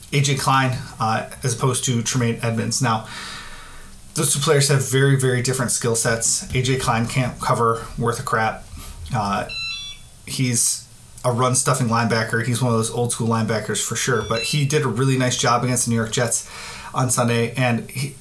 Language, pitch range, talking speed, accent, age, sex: English, 115-135 Hz, 175 wpm, American, 30-49, male